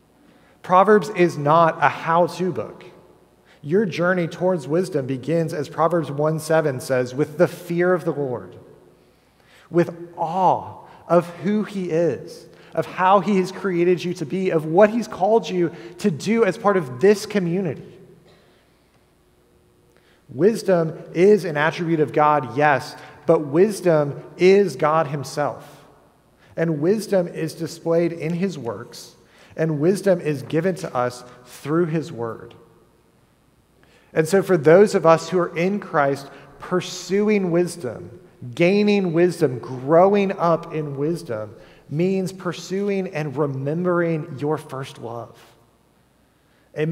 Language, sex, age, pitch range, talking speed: English, male, 30-49, 145-180 Hz, 130 wpm